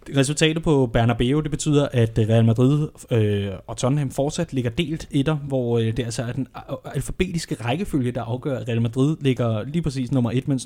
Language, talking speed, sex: Danish, 180 wpm, male